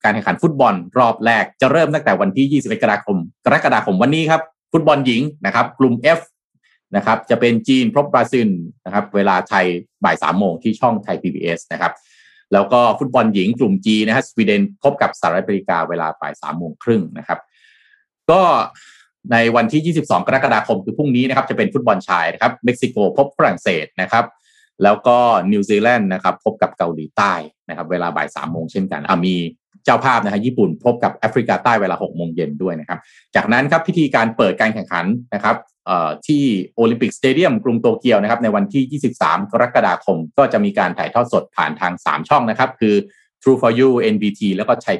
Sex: male